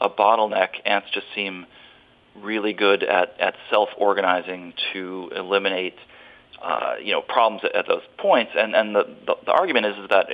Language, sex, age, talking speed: English, male, 40-59, 170 wpm